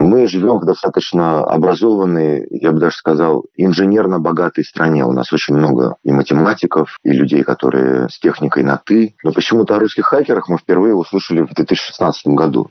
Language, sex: Russian, male